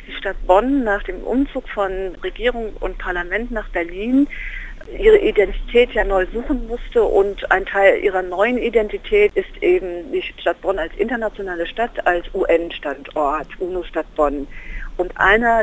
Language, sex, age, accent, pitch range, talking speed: German, female, 50-69, German, 175-240 Hz, 145 wpm